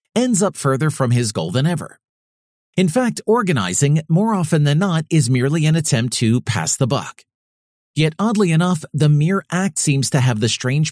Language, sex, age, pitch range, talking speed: English, male, 40-59, 120-170 Hz, 185 wpm